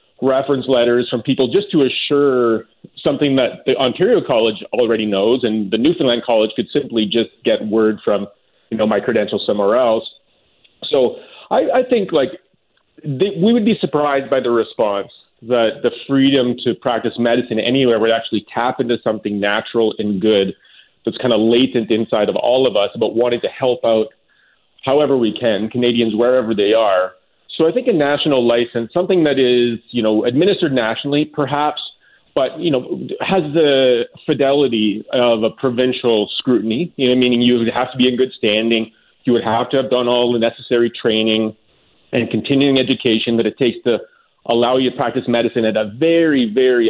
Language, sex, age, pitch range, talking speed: English, male, 40-59, 115-145 Hz, 180 wpm